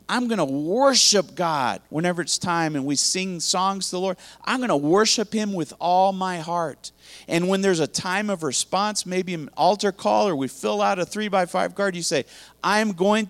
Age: 40-59